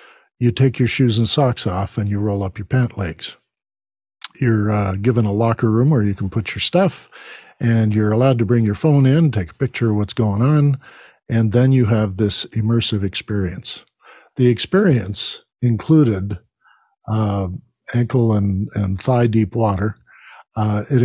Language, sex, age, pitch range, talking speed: English, male, 50-69, 105-130 Hz, 170 wpm